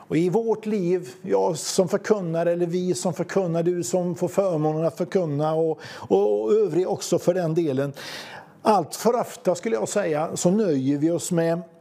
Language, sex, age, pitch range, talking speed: English, male, 50-69, 155-195 Hz, 180 wpm